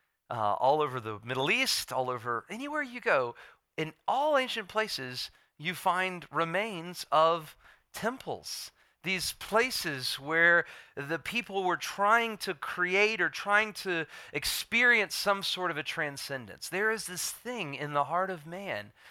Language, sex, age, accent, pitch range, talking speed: English, male, 40-59, American, 140-195 Hz, 150 wpm